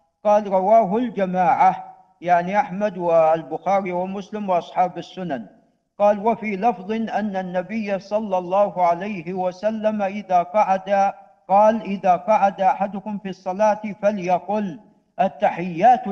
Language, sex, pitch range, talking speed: Arabic, male, 185-225 Hz, 105 wpm